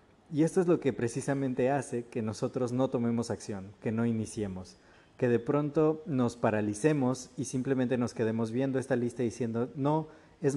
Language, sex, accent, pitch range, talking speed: Spanish, male, Mexican, 115-140 Hz, 170 wpm